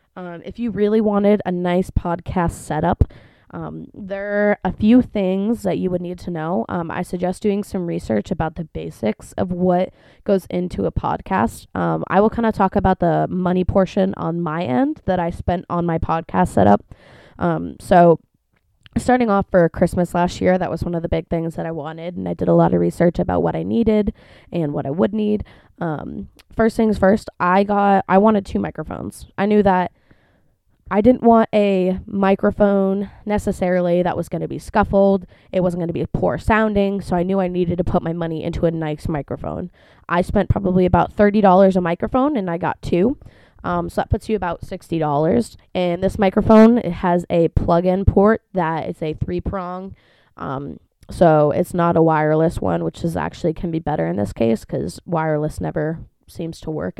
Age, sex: 20-39, female